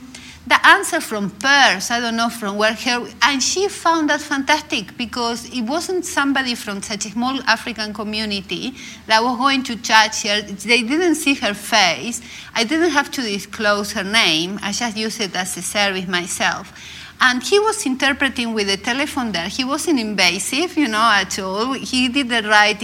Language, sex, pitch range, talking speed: English, female, 190-240 Hz, 185 wpm